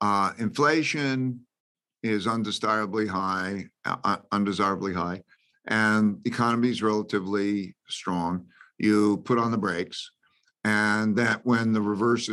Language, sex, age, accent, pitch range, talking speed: English, male, 50-69, American, 100-115 Hz, 115 wpm